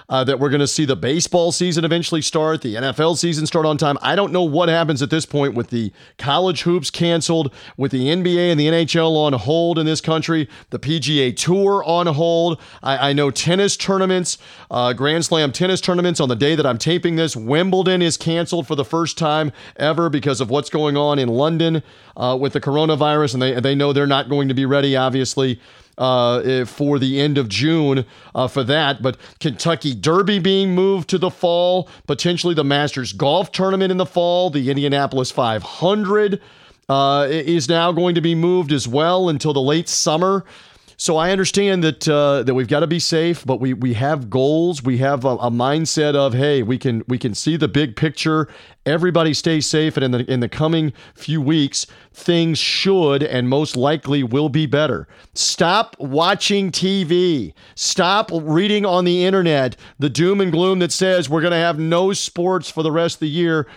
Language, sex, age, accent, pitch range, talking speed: English, male, 40-59, American, 135-175 Hz, 200 wpm